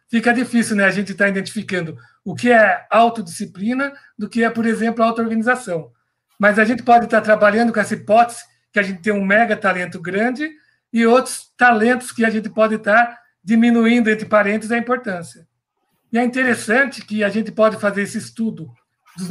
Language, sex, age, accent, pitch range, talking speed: Portuguese, male, 60-79, Brazilian, 195-235 Hz, 190 wpm